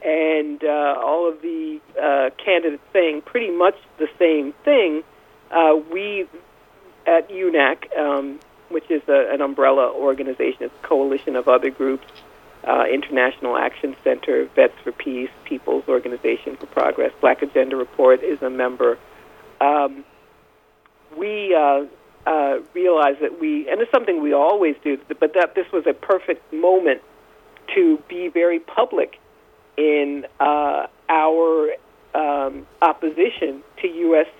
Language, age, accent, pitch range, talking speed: English, 50-69, American, 145-185 Hz, 135 wpm